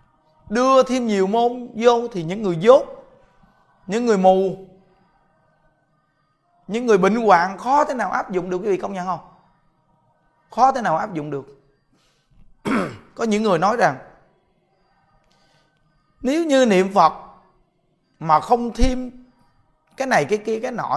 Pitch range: 155-225 Hz